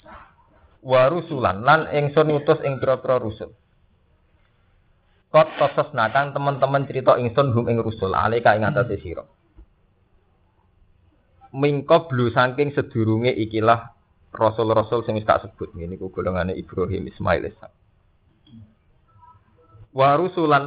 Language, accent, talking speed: Indonesian, native, 100 wpm